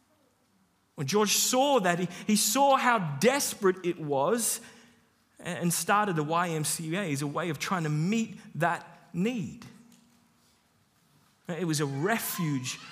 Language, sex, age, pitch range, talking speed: English, male, 30-49, 170-235 Hz, 130 wpm